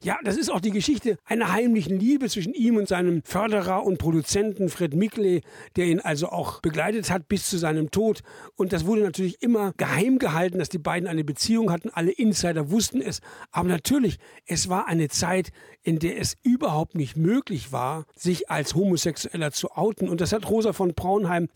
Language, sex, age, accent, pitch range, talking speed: German, male, 60-79, German, 155-200 Hz, 190 wpm